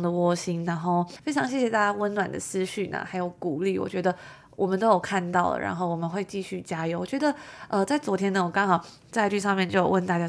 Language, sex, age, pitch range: Chinese, female, 20-39, 180-215 Hz